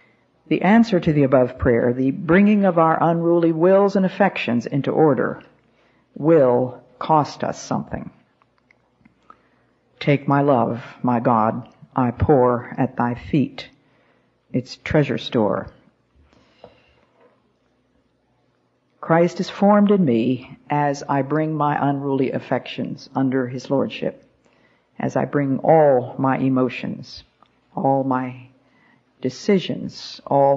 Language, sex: English, female